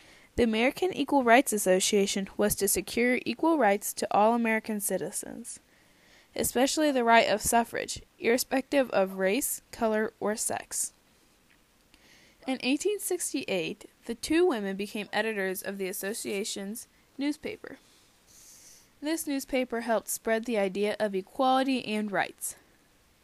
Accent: American